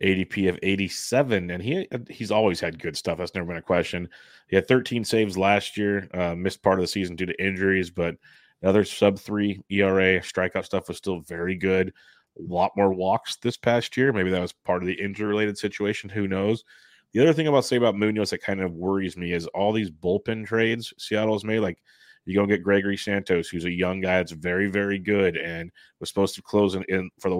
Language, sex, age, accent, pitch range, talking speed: English, male, 30-49, American, 90-105 Hz, 225 wpm